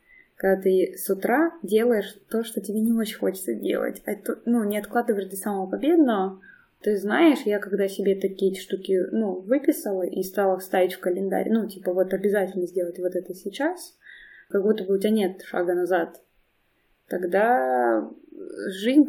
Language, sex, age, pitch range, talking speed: Russian, female, 20-39, 190-235 Hz, 160 wpm